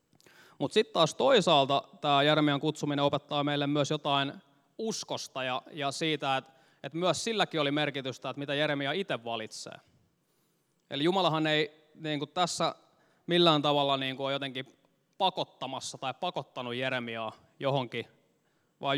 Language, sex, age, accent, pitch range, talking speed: Finnish, male, 20-39, native, 130-155 Hz, 135 wpm